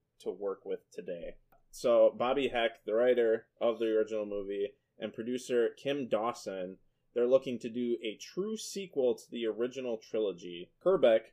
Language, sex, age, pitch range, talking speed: English, male, 20-39, 110-140 Hz, 155 wpm